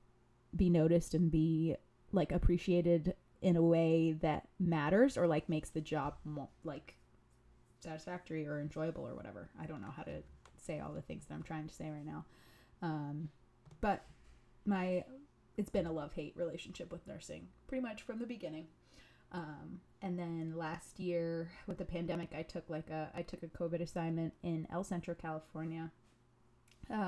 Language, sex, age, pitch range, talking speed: English, female, 20-39, 155-175 Hz, 170 wpm